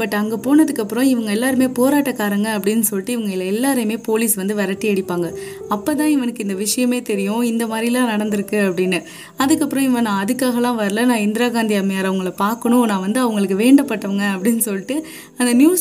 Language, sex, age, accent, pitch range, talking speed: Tamil, female, 20-39, native, 205-255 Hz, 60 wpm